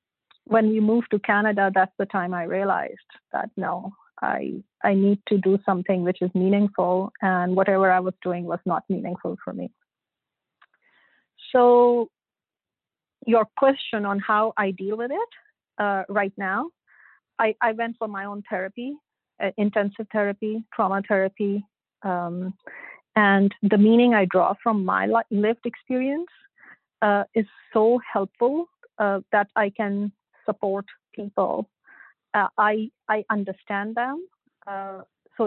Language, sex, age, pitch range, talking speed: English, female, 30-49, 200-230 Hz, 140 wpm